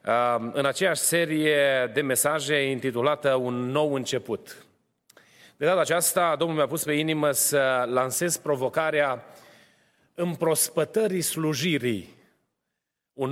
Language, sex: Romanian, male